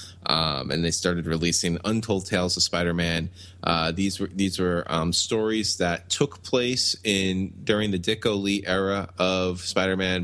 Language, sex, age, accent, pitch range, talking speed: English, male, 20-39, American, 90-105 Hz, 160 wpm